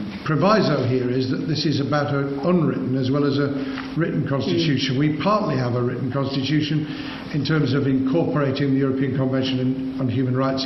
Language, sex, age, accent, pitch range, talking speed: English, male, 60-79, British, 130-150 Hz, 180 wpm